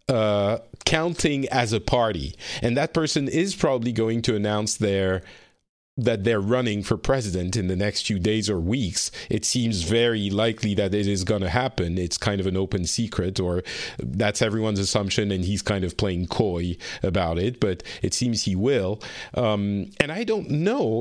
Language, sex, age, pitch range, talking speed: English, male, 40-59, 100-125 Hz, 180 wpm